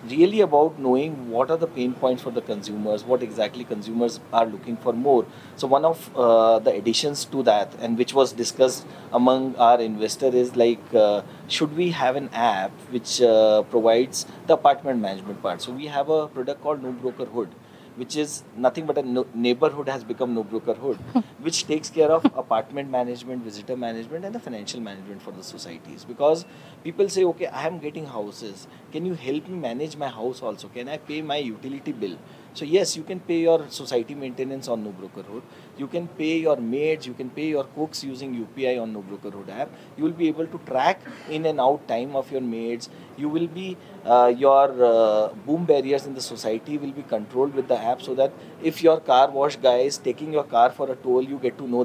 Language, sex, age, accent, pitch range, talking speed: English, male, 30-49, Indian, 120-155 Hz, 205 wpm